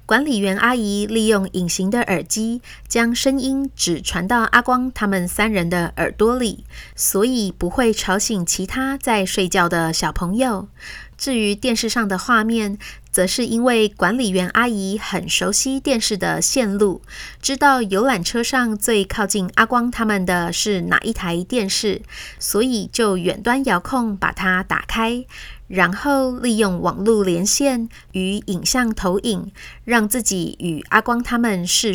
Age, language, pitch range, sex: 30-49, Chinese, 190-235 Hz, female